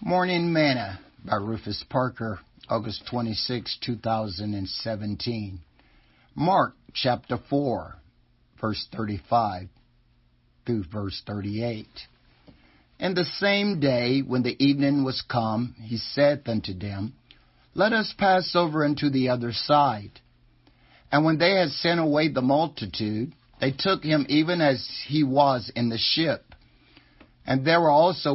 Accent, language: American, English